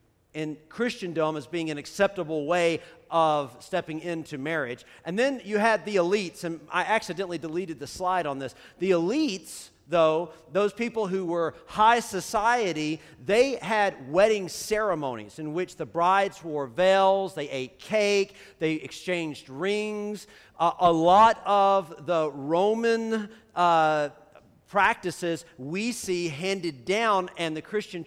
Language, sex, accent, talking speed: English, male, American, 140 wpm